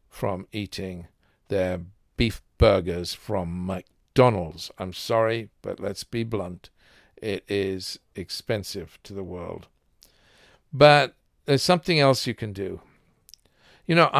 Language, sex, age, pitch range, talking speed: English, male, 50-69, 100-145 Hz, 120 wpm